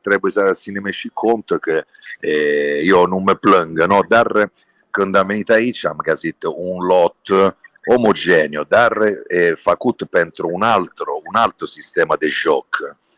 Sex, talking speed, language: male, 130 wpm, Romanian